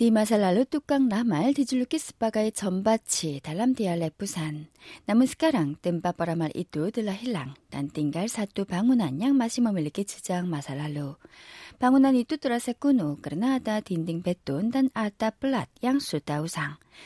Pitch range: 170-260 Hz